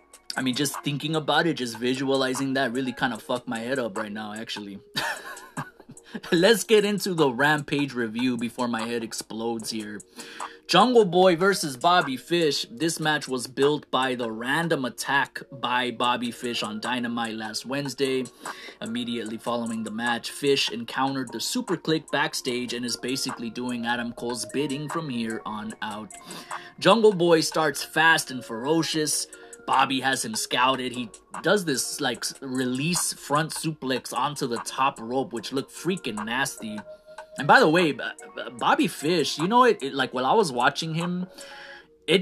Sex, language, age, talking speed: male, English, 20-39, 160 wpm